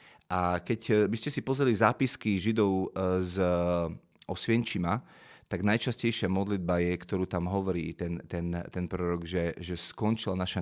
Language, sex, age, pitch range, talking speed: Slovak, male, 30-49, 90-115 Hz, 140 wpm